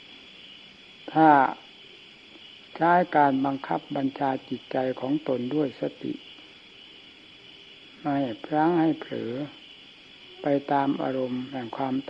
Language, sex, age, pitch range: Thai, male, 60-79, 130-160 Hz